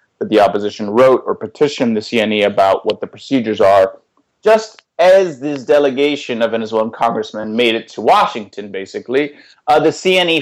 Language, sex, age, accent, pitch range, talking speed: English, male, 30-49, American, 115-165 Hz, 160 wpm